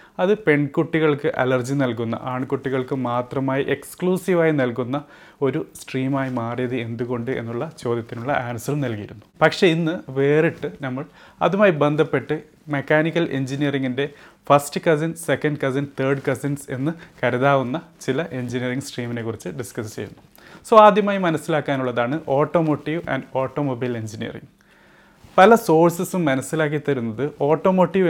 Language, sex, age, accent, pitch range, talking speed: Malayalam, male, 30-49, native, 125-155 Hz, 105 wpm